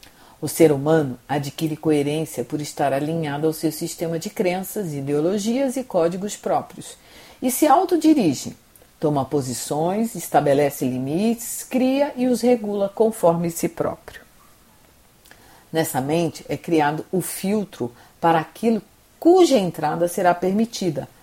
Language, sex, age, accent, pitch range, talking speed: Portuguese, female, 50-69, Brazilian, 145-200 Hz, 120 wpm